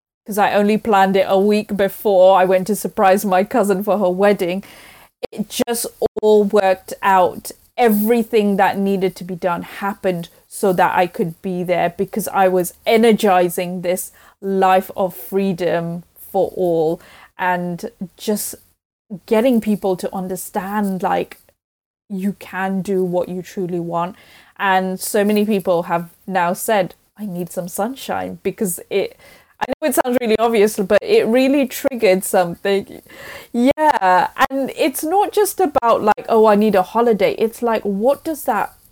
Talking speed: 155 wpm